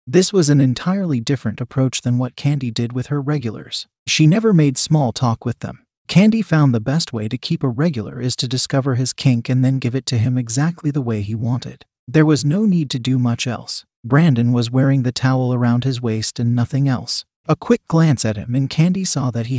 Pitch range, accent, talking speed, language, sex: 125-150 Hz, American, 225 wpm, English, male